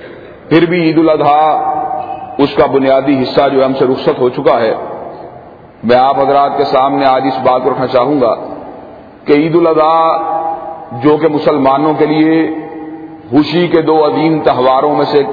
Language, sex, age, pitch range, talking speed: Urdu, male, 40-59, 150-180 Hz, 170 wpm